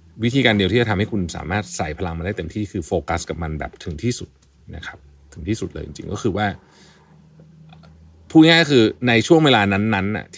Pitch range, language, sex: 85-115 Hz, Thai, male